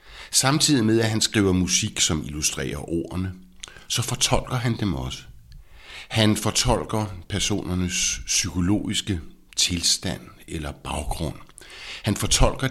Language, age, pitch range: Danish, 60-79, 85-110 Hz